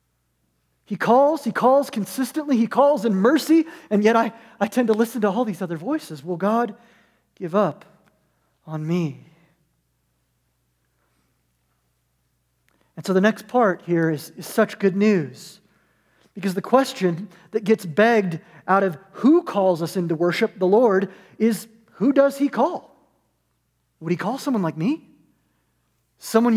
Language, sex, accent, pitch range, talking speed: English, male, American, 160-230 Hz, 145 wpm